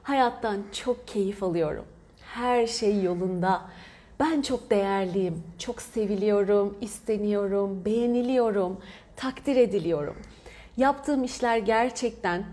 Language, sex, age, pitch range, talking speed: Turkish, female, 30-49, 200-245 Hz, 90 wpm